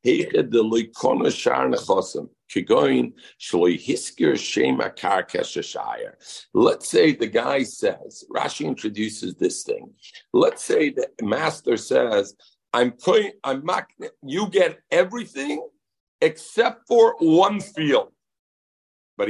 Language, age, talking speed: English, 60-79, 80 wpm